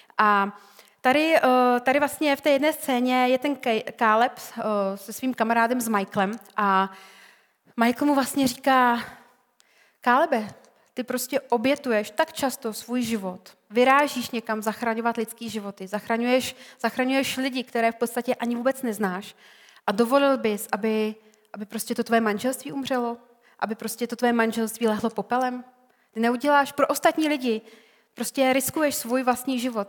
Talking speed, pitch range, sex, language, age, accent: 140 wpm, 220-255 Hz, female, Czech, 30-49, native